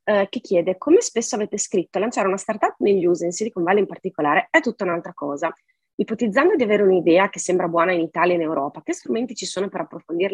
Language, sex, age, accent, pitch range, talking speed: English, female, 30-49, Italian, 155-205 Hz, 220 wpm